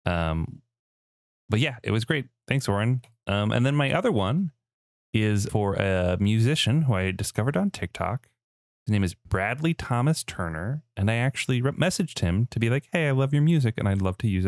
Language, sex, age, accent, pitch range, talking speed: English, male, 30-49, American, 95-130 Hz, 195 wpm